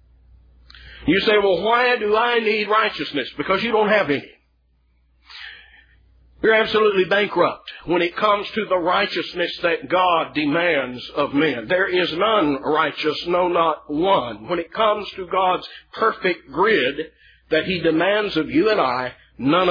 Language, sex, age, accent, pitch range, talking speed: English, male, 50-69, American, 155-230 Hz, 150 wpm